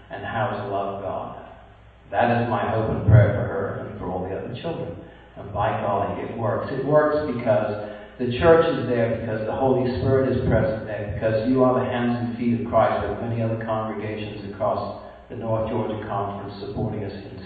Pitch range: 100-130 Hz